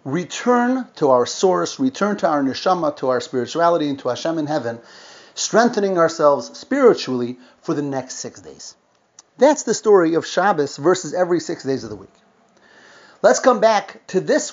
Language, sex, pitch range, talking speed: English, male, 140-200 Hz, 170 wpm